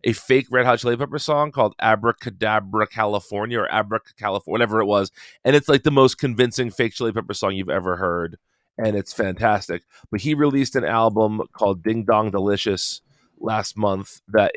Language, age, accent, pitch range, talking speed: English, 30-49, American, 100-130 Hz, 180 wpm